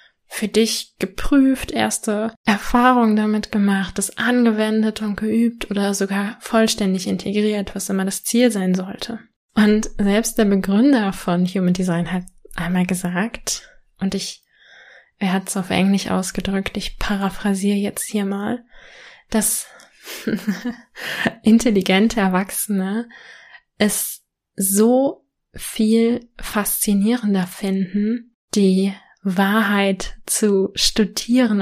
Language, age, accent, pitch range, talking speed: German, 20-39, German, 195-230 Hz, 105 wpm